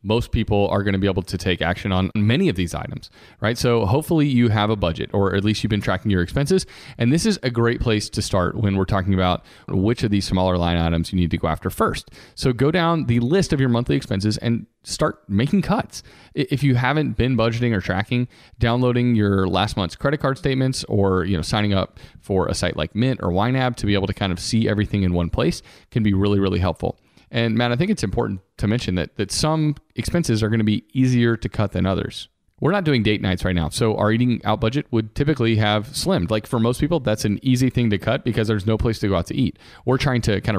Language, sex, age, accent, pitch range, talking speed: English, male, 30-49, American, 100-125 Hz, 250 wpm